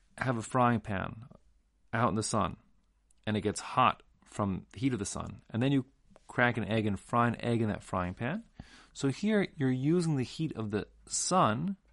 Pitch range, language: 105-135 Hz, English